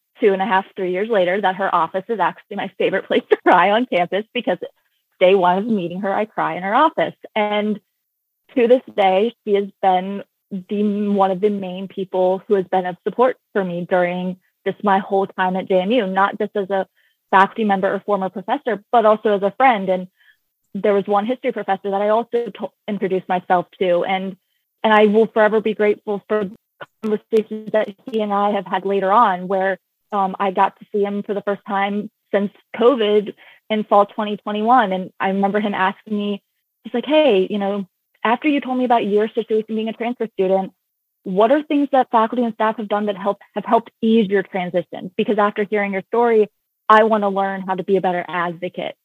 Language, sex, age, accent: English, female, 20-39, American